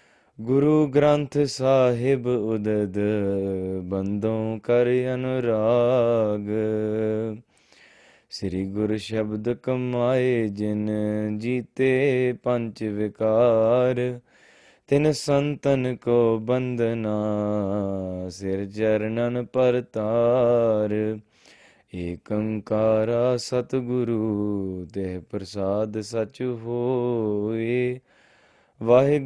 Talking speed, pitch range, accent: 55 wpm, 105-125 Hz, Indian